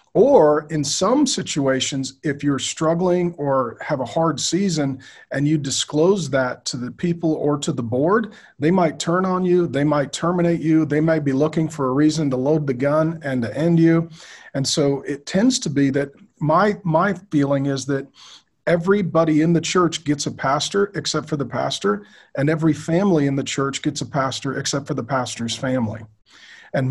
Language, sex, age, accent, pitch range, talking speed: English, male, 40-59, American, 130-160 Hz, 190 wpm